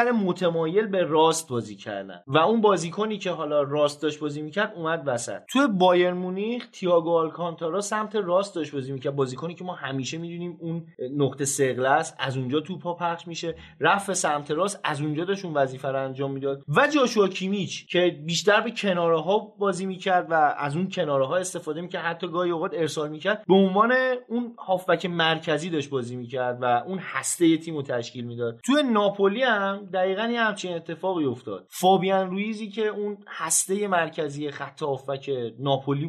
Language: Persian